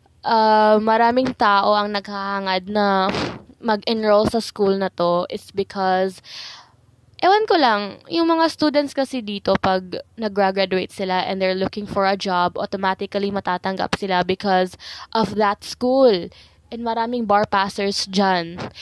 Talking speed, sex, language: 135 wpm, female, Filipino